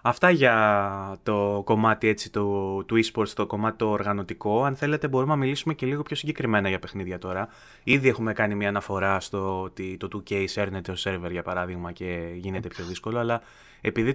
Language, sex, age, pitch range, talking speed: Greek, male, 20-39, 100-145 Hz, 180 wpm